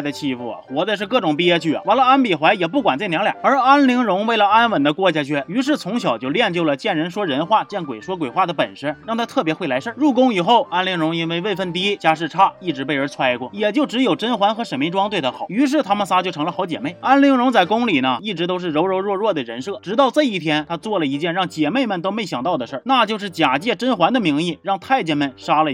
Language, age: Chinese, 30-49